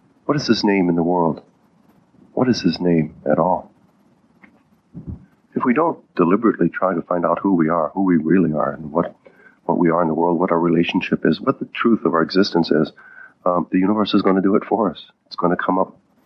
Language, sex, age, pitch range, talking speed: English, male, 40-59, 85-95 Hz, 230 wpm